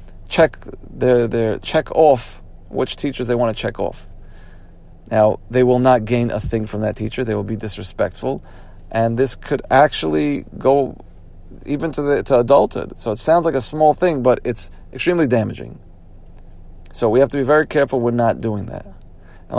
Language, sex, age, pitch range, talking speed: English, male, 40-59, 95-125 Hz, 180 wpm